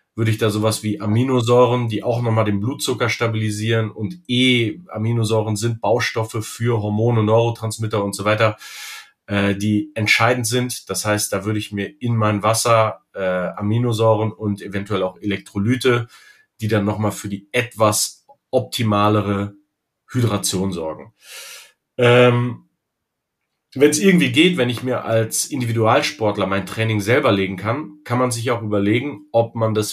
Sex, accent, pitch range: male, German, 105-125 Hz